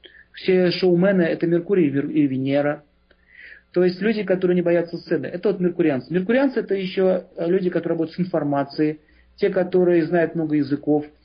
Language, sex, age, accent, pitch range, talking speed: Russian, male, 40-59, native, 155-185 Hz, 155 wpm